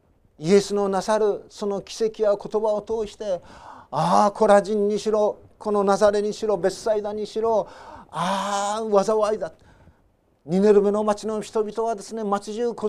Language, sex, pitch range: Japanese, male, 155-210 Hz